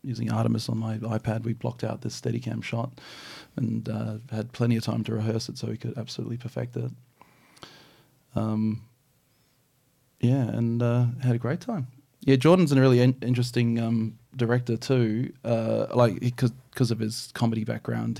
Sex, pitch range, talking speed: male, 110-125 Hz, 165 wpm